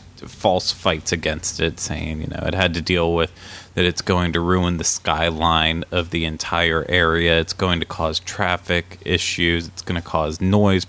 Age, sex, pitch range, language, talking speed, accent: 30-49, male, 80-95 Hz, English, 185 wpm, American